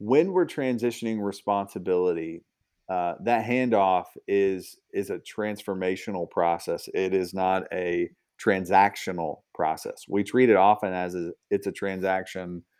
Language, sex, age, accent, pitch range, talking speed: English, male, 40-59, American, 95-105 Hz, 125 wpm